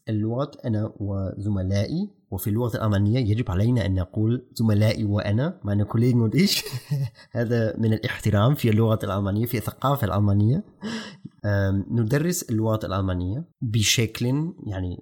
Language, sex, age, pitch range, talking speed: German, male, 30-49, 105-140 Hz, 115 wpm